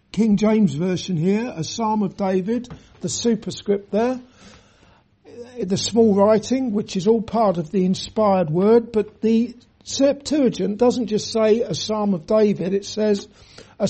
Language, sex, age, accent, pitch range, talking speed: English, male, 60-79, British, 190-230 Hz, 150 wpm